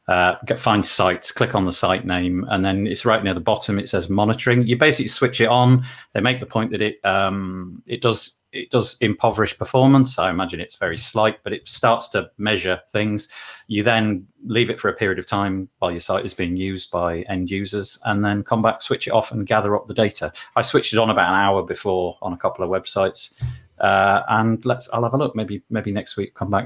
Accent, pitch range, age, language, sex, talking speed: British, 100-125 Hz, 40-59, English, male, 230 wpm